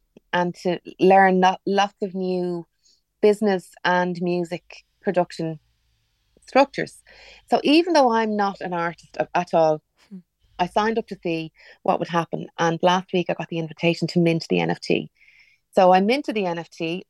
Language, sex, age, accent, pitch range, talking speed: English, female, 30-49, Irish, 170-195 Hz, 155 wpm